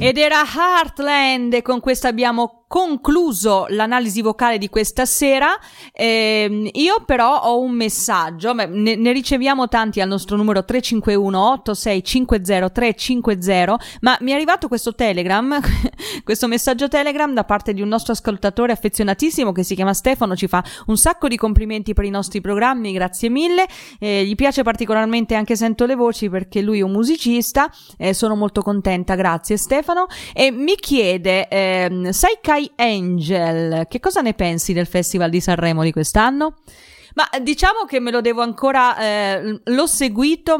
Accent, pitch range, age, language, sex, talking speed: native, 200-255 Hz, 30-49, Italian, female, 155 wpm